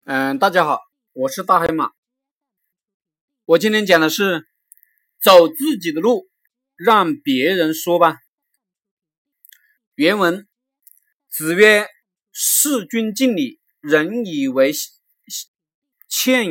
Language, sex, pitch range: Chinese, male, 180-275 Hz